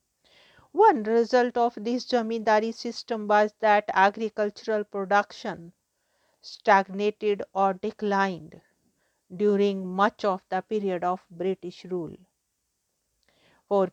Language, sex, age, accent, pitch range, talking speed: English, female, 50-69, Indian, 190-215 Hz, 95 wpm